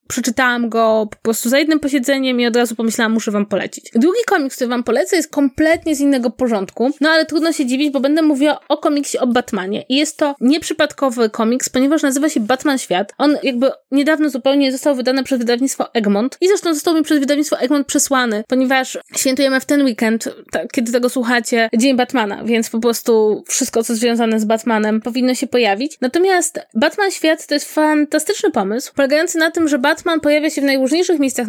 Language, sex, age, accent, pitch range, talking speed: Polish, female, 20-39, native, 240-295 Hz, 200 wpm